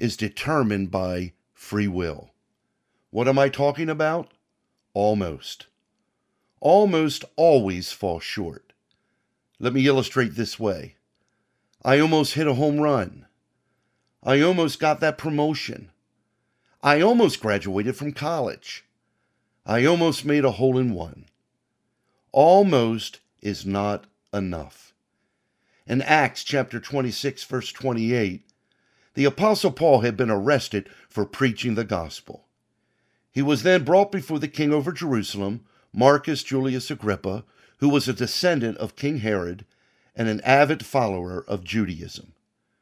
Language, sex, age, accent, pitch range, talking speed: English, male, 50-69, American, 105-150 Hz, 125 wpm